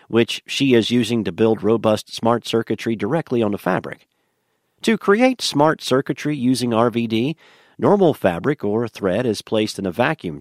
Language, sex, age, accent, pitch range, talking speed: English, male, 50-69, American, 105-135 Hz, 160 wpm